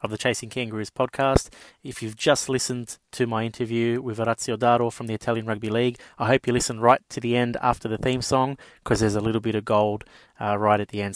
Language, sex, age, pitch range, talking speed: English, male, 30-49, 110-125 Hz, 235 wpm